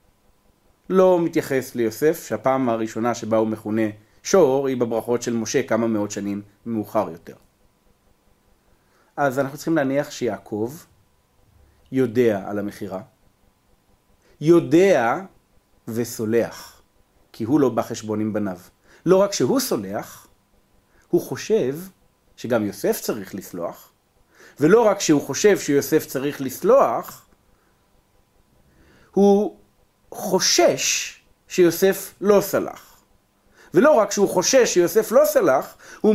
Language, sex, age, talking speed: Hebrew, male, 40-59, 110 wpm